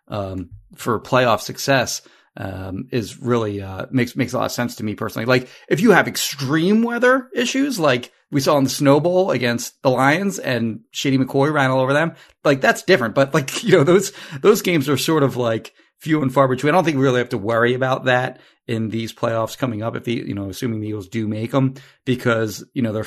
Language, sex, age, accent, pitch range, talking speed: English, male, 30-49, American, 105-130 Hz, 230 wpm